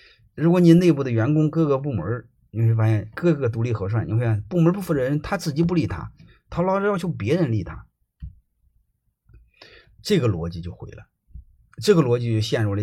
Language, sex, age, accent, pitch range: Chinese, male, 30-49, native, 100-140 Hz